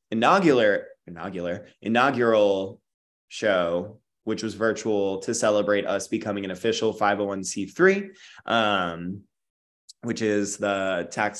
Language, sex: English, male